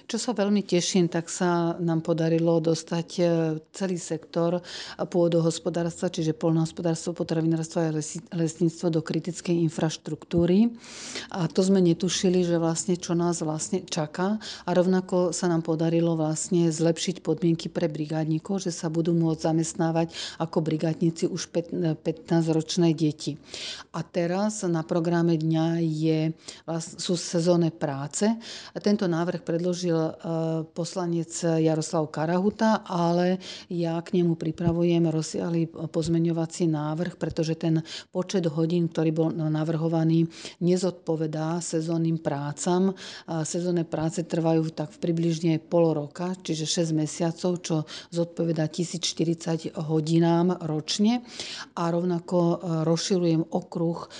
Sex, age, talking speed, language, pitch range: female, 40-59, 115 wpm, Slovak, 160-175 Hz